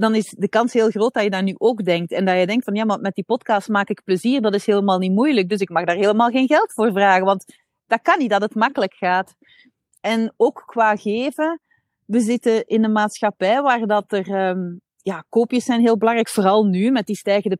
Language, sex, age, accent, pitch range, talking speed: Dutch, female, 30-49, Dutch, 195-235 Hz, 240 wpm